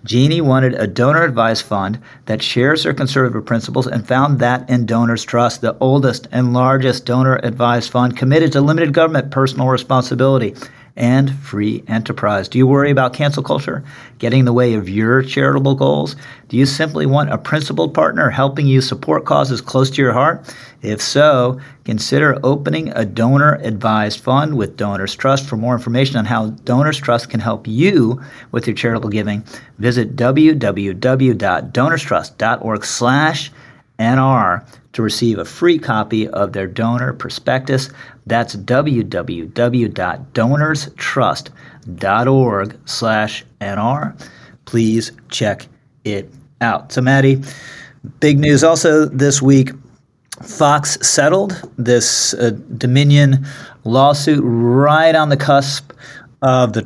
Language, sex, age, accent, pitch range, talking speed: English, male, 50-69, American, 115-140 Hz, 130 wpm